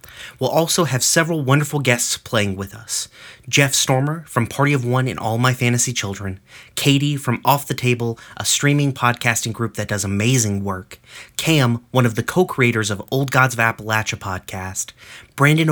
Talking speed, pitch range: 170 wpm, 115-140 Hz